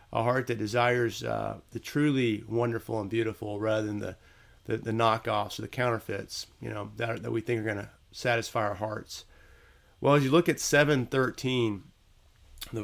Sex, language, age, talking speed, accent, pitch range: male, English, 30-49, 185 wpm, American, 105-120 Hz